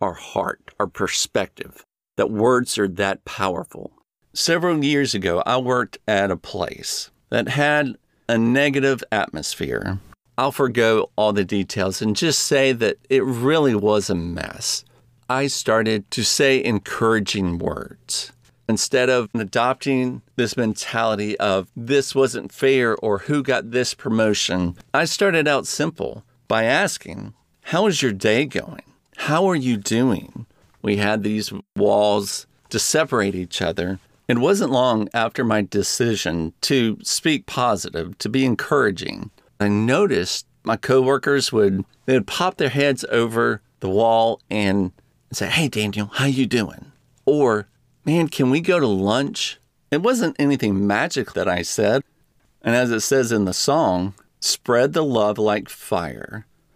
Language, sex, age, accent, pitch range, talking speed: English, male, 50-69, American, 105-135 Hz, 145 wpm